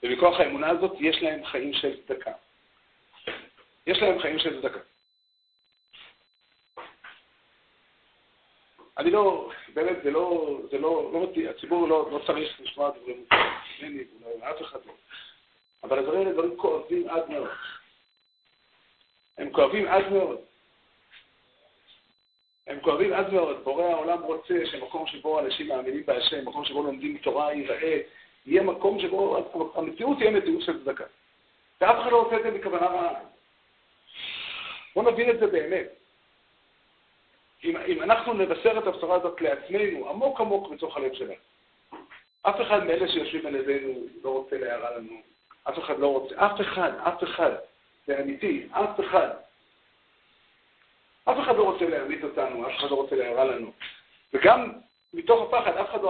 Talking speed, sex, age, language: 140 wpm, male, 50-69, Hebrew